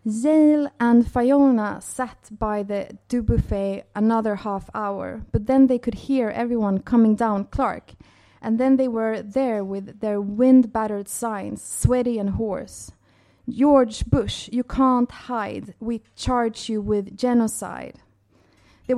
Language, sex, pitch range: Swedish, female, 205-255 Hz